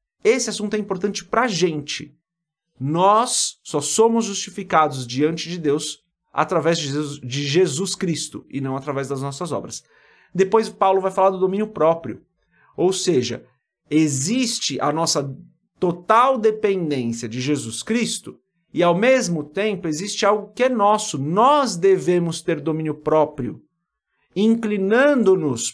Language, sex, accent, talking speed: Portuguese, male, Brazilian, 135 wpm